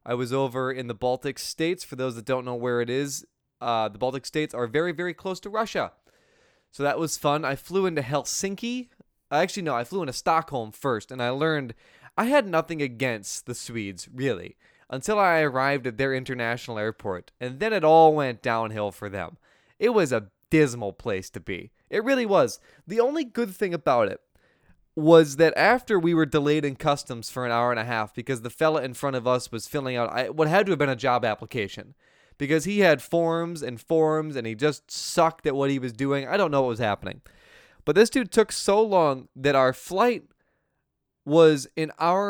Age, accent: 20-39, American